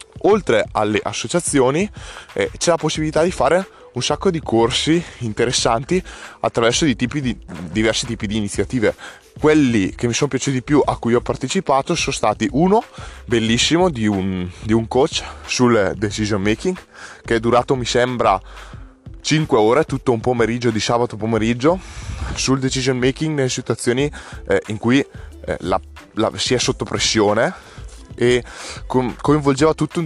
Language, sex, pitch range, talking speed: Italian, male, 110-145 Hz, 145 wpm